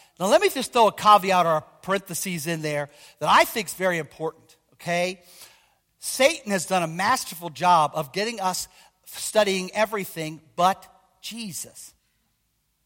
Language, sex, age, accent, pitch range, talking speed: English, male, 50-69, American, 170-235 Hz, 150 wpm